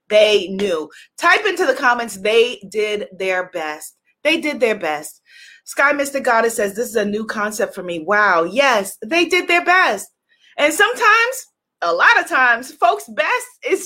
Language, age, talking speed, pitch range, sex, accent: English, 30-49, 175 wpm, 230-340 Hz, female, American